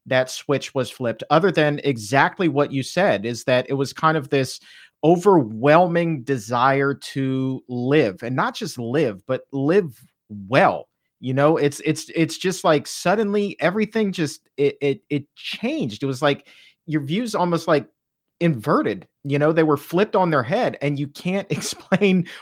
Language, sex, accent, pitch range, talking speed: English, male, American, 130-160 Hz, 165 wpm